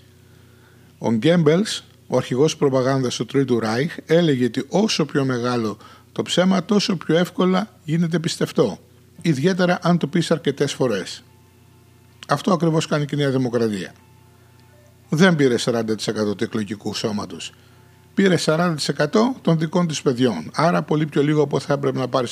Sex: male